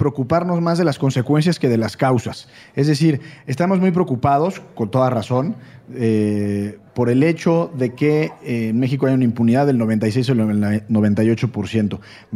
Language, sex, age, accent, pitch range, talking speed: Spanish, male, 30-49, Mexican, 120-165 Hz, 160 wpm